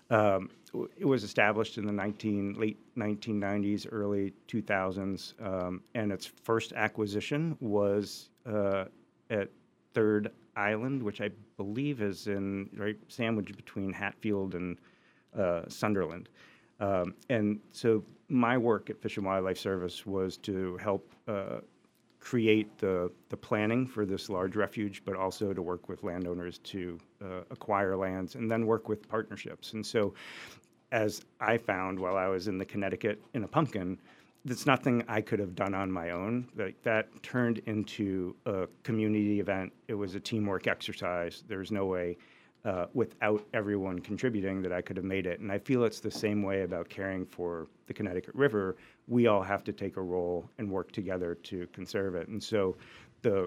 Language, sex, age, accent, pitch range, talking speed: English, male, 50-69, American, 95-110 Hz, 165 wpm